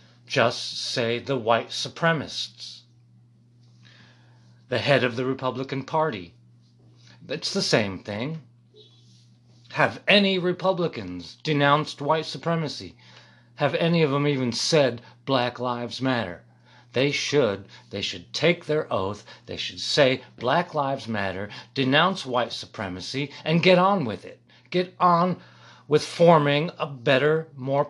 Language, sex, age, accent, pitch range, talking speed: English, male, 40-59, American, 100-150 Hz, 125 wpm